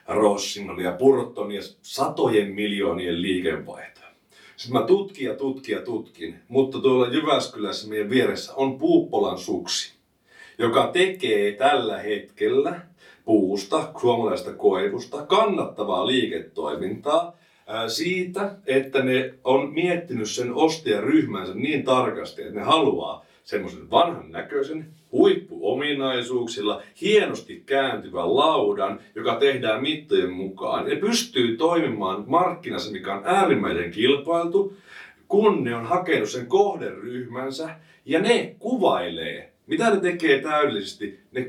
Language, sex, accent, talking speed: Finnish, male, native, 110 wpm